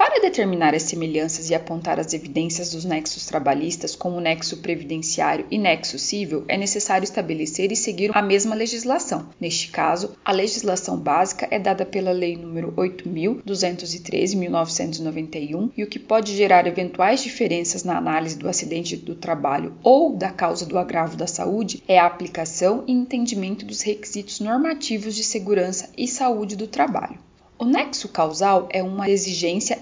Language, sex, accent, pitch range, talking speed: Portuguese, female, Brazilian, 170-225 Hz, 155 wpm